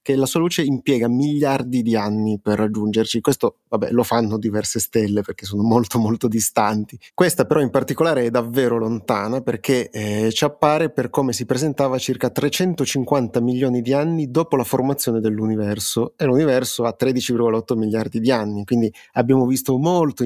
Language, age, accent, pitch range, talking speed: Italian, 30-49, native, 110-130 Hz, 165 wpm